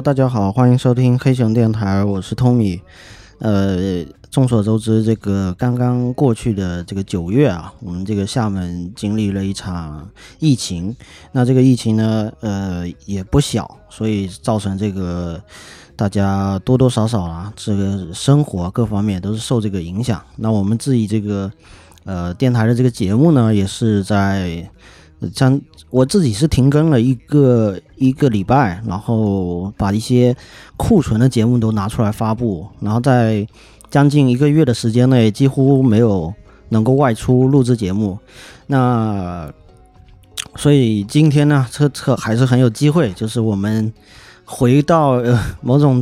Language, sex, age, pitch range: Chinese, male, 30-49, 100-125 Hz